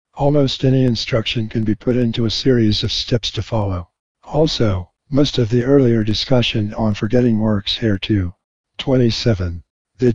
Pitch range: 110-130 Hz